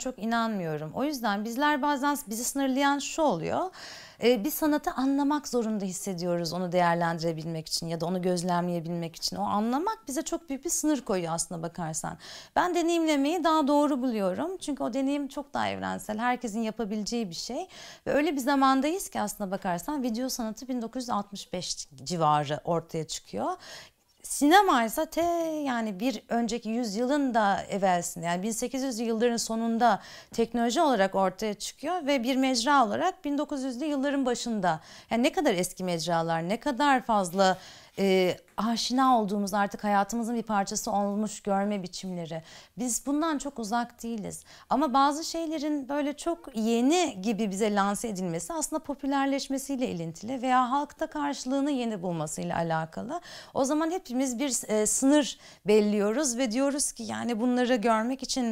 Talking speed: 145 wpm